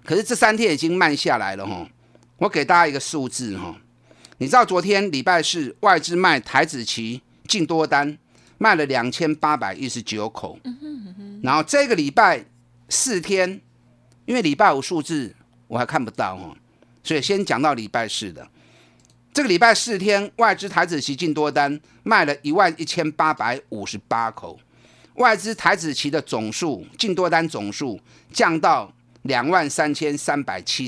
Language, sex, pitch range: Chinese, male, 125-190 Hz